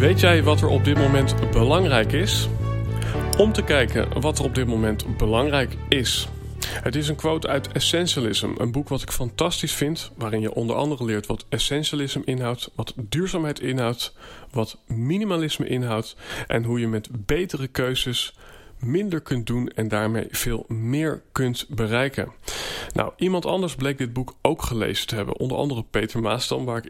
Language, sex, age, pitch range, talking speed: Dutch, male, 40-59, 110-140 Hz, 170 wpm